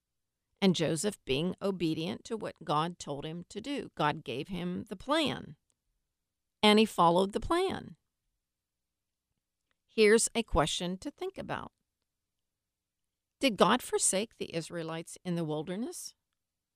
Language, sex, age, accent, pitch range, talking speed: English, female, 50-69, American, 160-215 Hz, 125 wpm